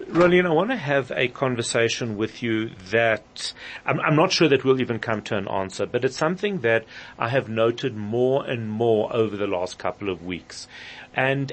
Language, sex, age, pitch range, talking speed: English, male, 40-59, 110-145 Hz, 205 wpm